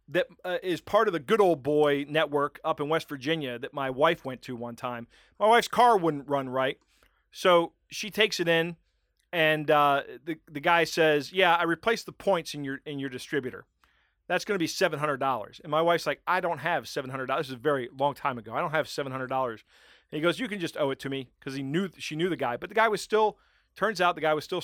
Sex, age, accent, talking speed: male, 40-59, American, 260 wpm